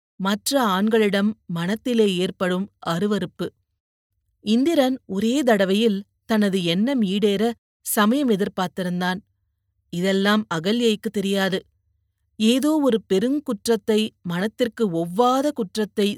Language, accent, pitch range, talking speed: Tamil, native, 185-235 Hz, 80 wpm